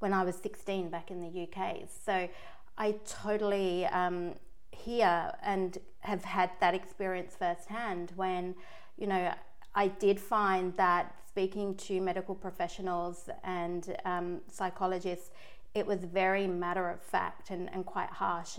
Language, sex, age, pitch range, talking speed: English, female, 30-49, 180-205 Hz, 140 wpm